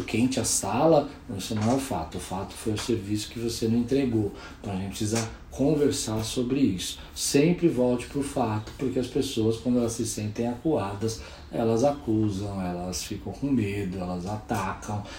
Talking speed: 180 wpm